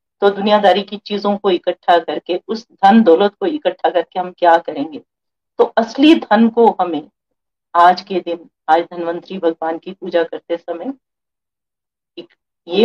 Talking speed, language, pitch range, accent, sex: 150 wpm, Hindi, 170-240 Hz, native, female